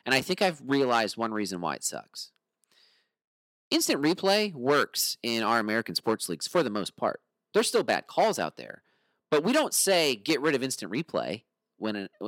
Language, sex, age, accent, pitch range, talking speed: English, male, 40-59, American, 110-160 Hz, 185 wpm